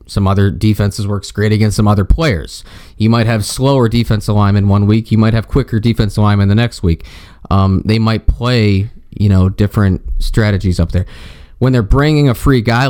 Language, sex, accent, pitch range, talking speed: English, male, American, 95-115 Hz, 195 wpm